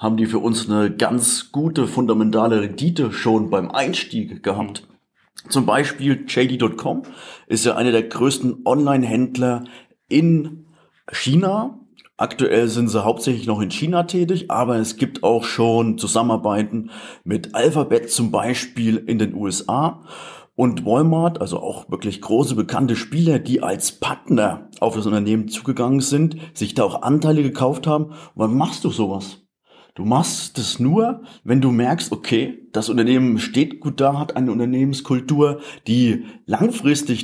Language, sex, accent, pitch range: German, male, German, 115-145 Hz